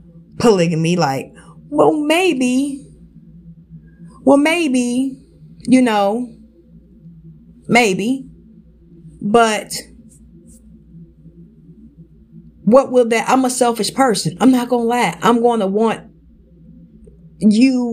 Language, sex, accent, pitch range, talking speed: English, female, American, 175-235 Hz, 85 wpm